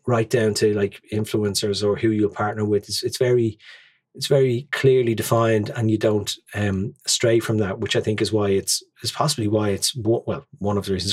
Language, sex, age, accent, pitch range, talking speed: English, male, 30-49, Irish, 105-140 Hz, 210 wpm